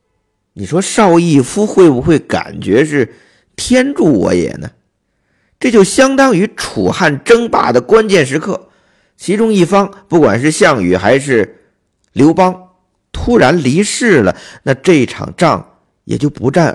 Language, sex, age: Chinese, male, 50-69